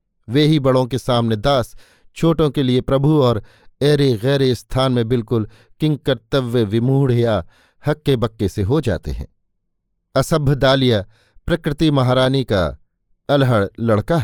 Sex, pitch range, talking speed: male, 120-150 Hz, 145 wpm